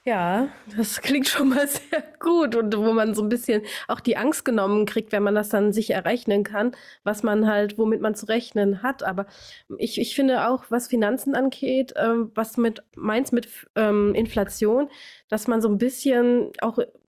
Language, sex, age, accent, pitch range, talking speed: German, female, 20-39, German, 215-255 Hz, 185 wpm